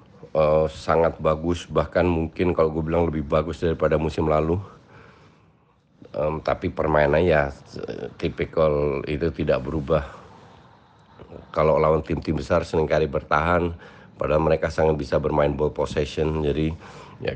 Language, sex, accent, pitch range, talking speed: Indonesian, male, native, 75-85 Hz, 125 wpm